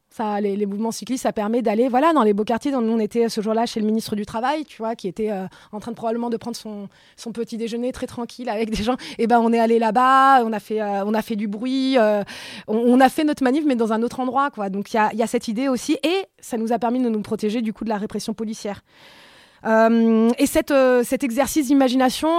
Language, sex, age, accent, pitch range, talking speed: French, female, 20-39, French, 215-260 Hz, 270 wpm